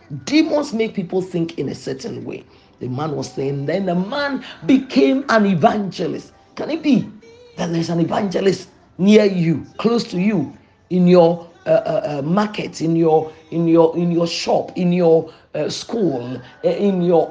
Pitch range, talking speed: 160-205 Hz, 170 wpm